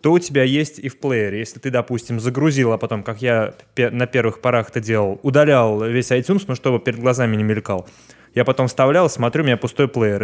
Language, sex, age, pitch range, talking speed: Russian, male, 20-39, 110-125 Hz, 215 wpm